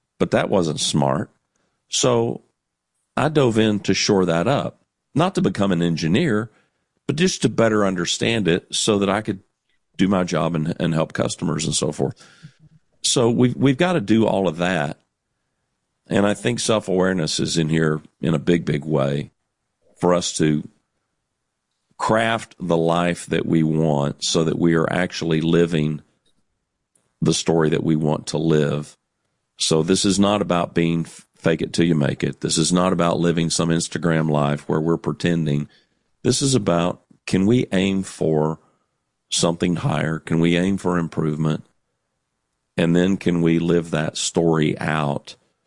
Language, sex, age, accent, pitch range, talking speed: English, male, 50-69, American, 80-100 Hz, 165 wpm